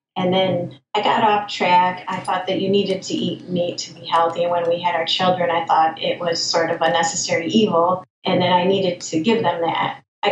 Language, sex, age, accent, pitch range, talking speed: English, female, 30-49, American, 175-200 Hz, 240 wpm